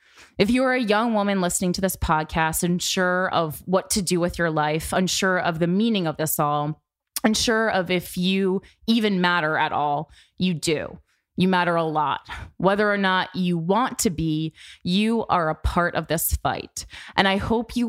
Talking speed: 190 wpm